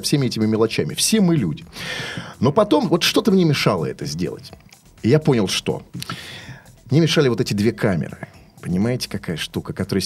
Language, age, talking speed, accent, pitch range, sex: Russian, 30-49, 165 wpm, native, 120-175 Hz, male